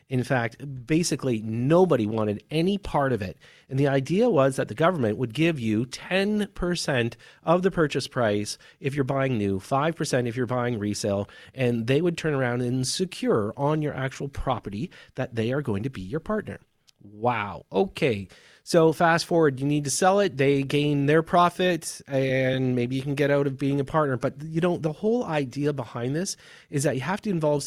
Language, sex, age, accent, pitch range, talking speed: English, male, 30-49, American, 125-165 Hz, 195 wpm